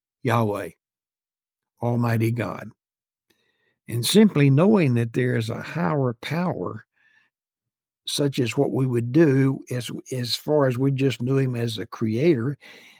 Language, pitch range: English, 120-145 Hz